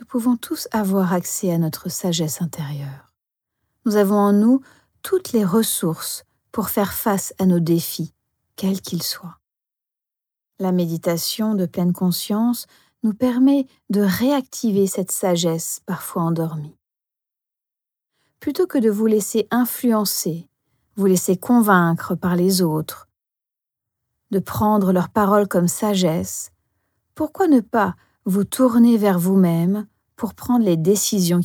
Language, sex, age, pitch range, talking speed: French, female, 40-59, 175-235 Hz, 130 wpm